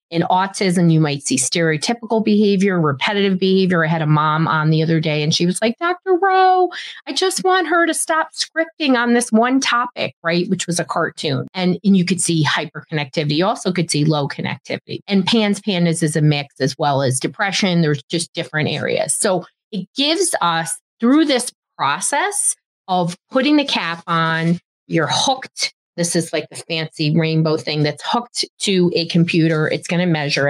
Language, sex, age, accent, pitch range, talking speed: English, female, 30-49, American, 160-215 Hz, 185 wpm